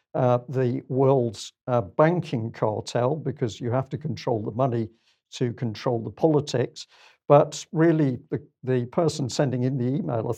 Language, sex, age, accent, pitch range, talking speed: English, male, 50-69, British, 120-145 Hz, 155 wpm